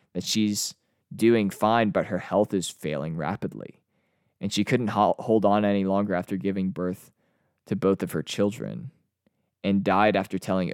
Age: 20-39